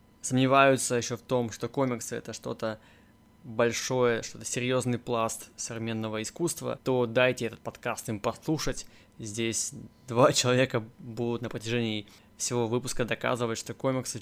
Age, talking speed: 20-39, 130 wpm